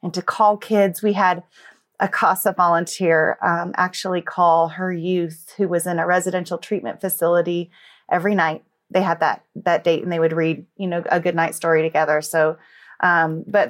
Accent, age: American, 30-49